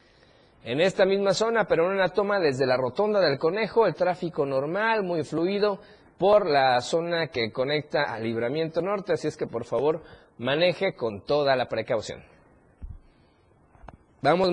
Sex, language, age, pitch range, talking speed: male, Spanish, 50-69, 135-190 Hz, 155 wpm